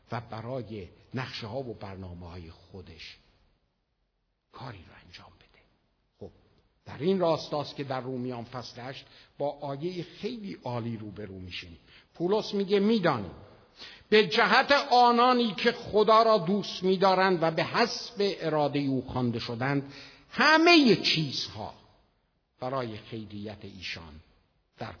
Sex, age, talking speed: male, 60-79, 120 wpm